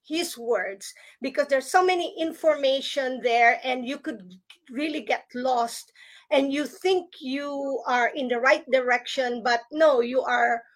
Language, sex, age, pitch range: English, female, 40-59, 250-300 Hz